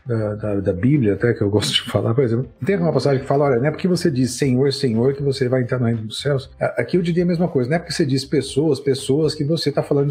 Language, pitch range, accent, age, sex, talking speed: Portuguese, 130-160 Hz, Brazilian, 40-59, male, 295 wpm